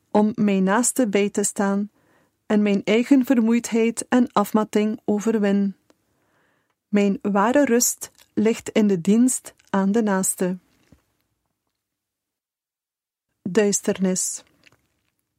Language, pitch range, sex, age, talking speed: Dutch, 205-245 Hz, female, 30-49, 95 wpm